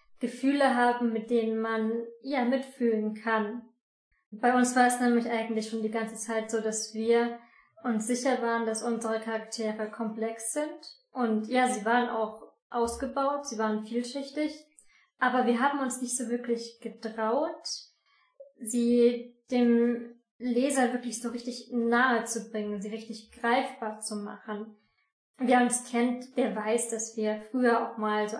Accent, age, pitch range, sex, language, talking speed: German, 20-39, 225-255 Hz, female, German, 150 wpm